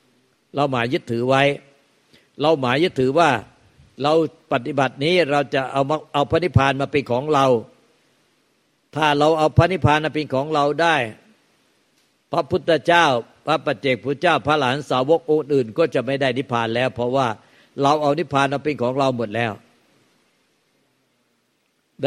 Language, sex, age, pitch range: Thai, male, 60-79, 125-150 Hz